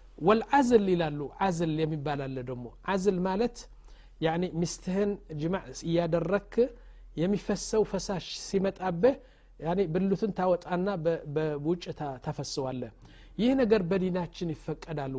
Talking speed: 115 wpm